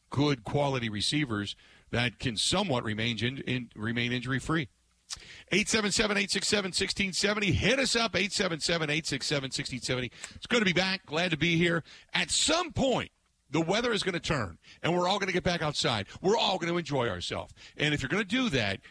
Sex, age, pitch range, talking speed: male, 50-69, 120-175 Hz, 180 wpm